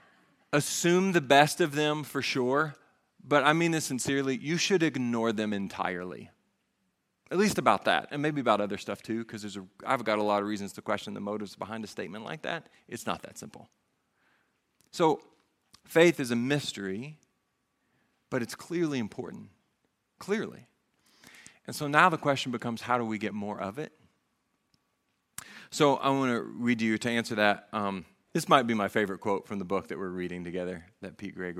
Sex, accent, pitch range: male, American, 105-155 Hz